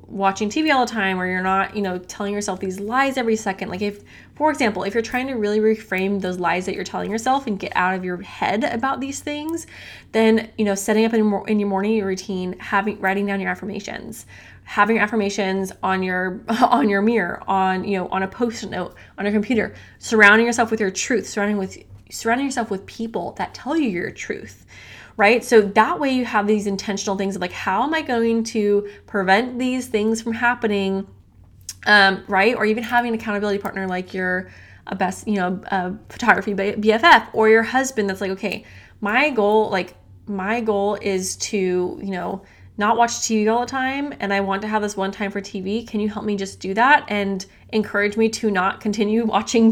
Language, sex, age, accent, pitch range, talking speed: English, female, 20-39, American, 195-225 Hz, 205 wpm